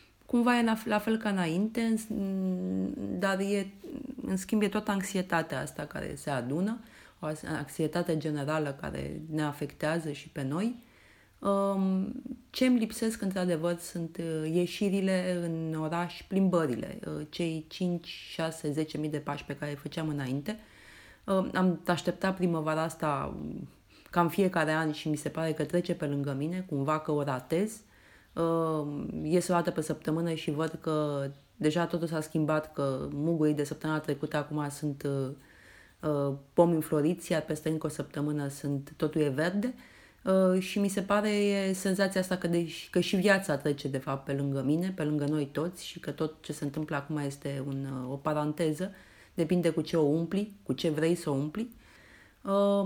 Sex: female